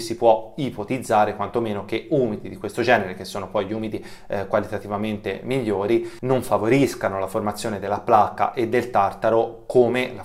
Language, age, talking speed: Italian, 30-49, 165 wpm